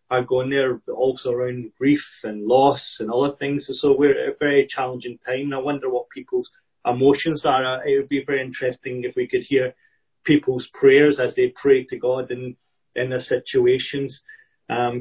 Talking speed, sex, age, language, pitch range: 180 wpm, male, 30-49, English, 125-165 Hz